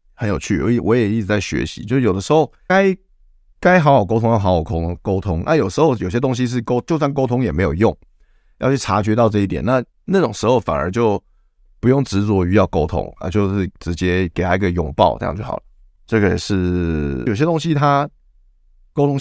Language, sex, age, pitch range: Chinese, male, 20-39, 90-125 Hz